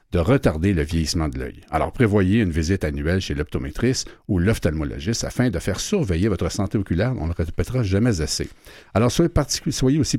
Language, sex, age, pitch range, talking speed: French, male, 60-79, 80-105 Hz, 195 wpm